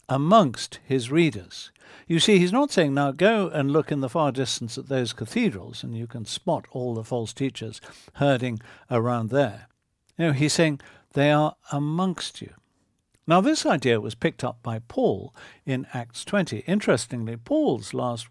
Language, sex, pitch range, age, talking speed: English, male, 115-160 Hz, 60-79, 165 wpm